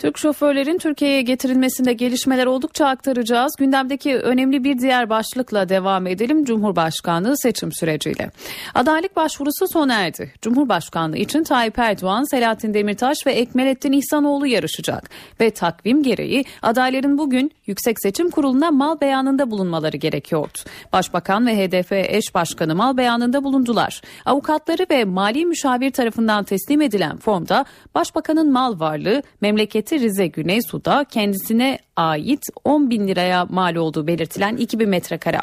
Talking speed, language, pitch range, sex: 130 wpm, Turkish, 195-280 Hz, female